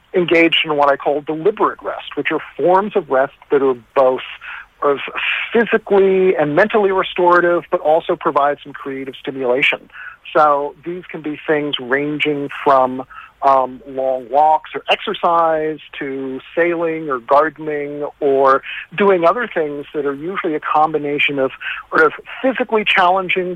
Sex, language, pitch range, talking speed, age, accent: male, English, 140-180 Hz, 140 wpm, 50-69, American